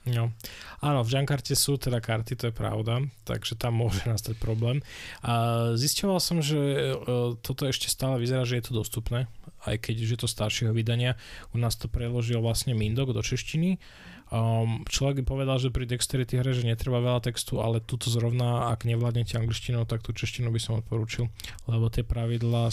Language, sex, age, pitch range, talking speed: Slovak, male, 20-39, 110-125 Hz, 180 wpm